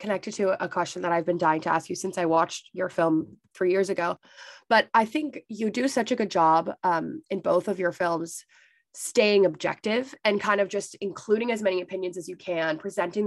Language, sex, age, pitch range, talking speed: English, female, 20-39, 165-205 Hz, 215 wpm